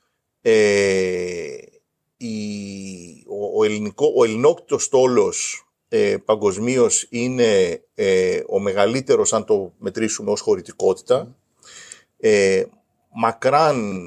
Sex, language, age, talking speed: male, Greek, 40-59, 85 wpm